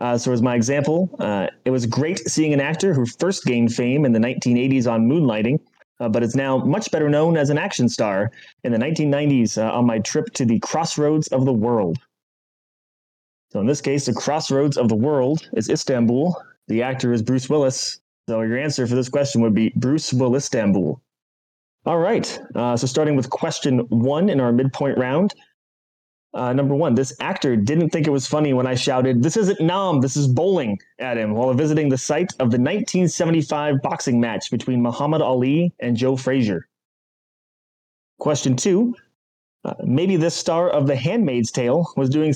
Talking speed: 185 wpm